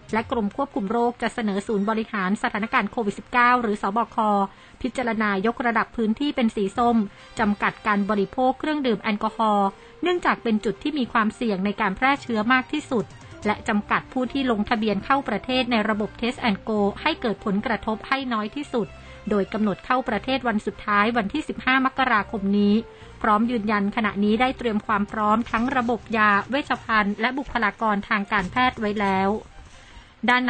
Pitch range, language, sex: 205-245 Hz, Thai, female